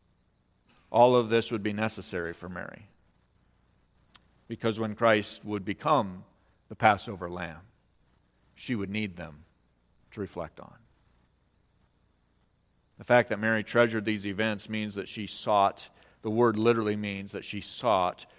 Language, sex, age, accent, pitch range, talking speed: English, male, 40-59, American, 95-120 Hz, 135 wpm